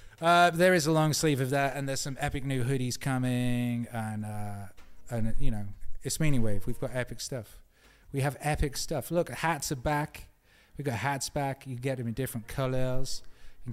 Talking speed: 210 wpm